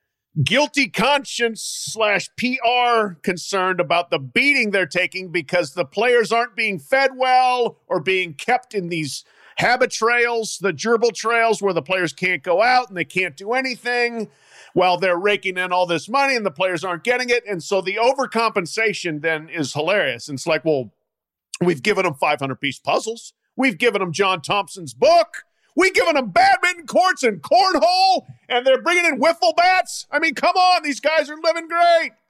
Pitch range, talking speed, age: 175-250 Hz, 180 wpm, 50-69